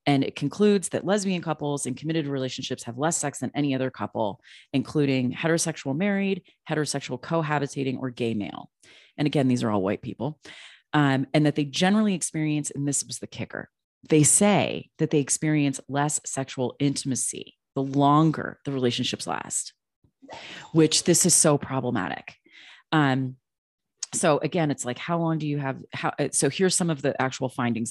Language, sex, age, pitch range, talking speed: English, female, 30-49, 125-155 Hz, 165 wpm